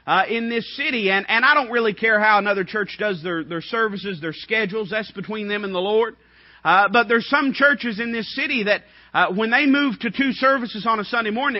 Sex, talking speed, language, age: male, 235 wpm, English, 40-59